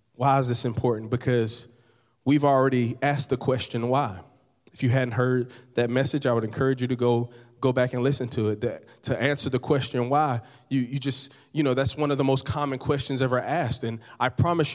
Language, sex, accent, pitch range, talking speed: English, male, American, 125-150 Hz, 210 wpm